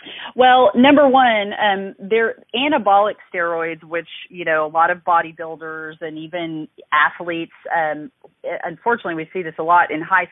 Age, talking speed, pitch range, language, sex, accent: 30-49, 150 wpm, 155-190 Hz, English, female, American